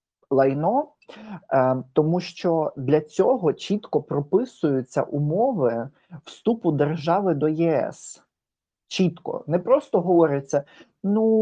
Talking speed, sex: 90 wpm, male